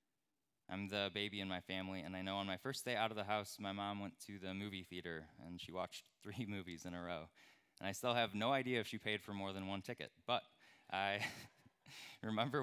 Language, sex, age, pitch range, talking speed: English, male, 20-39, 85-105 Hz, 235 wpm